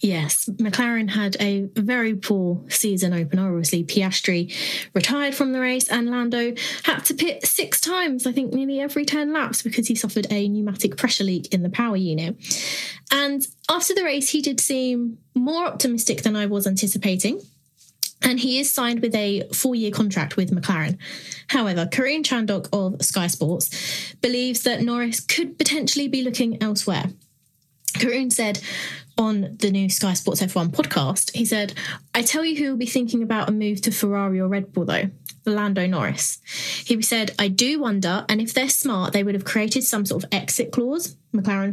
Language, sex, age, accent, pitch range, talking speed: English, female, 20-39, British, 190-250 Hz, 175 wpm